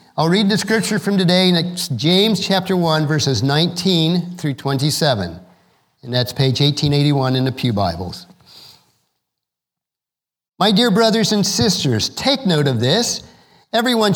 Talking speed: 135 wpm